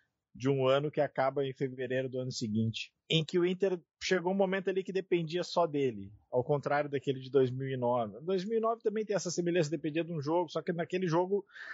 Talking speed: 205 wpm